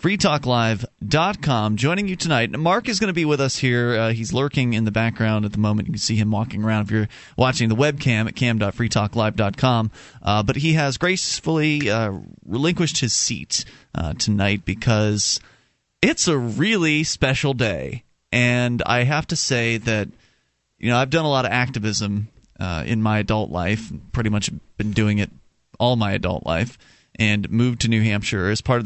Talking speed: 180 wpm